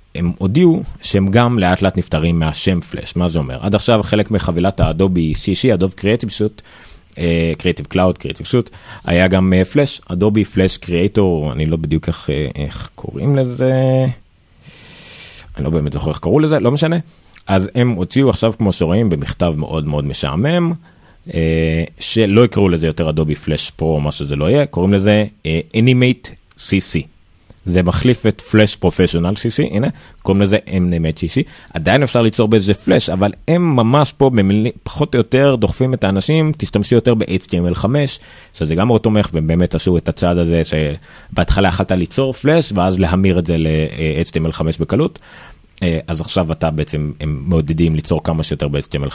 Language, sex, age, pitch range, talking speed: Hebrew, male, 30-49, 80-110 Hz, 170 wpm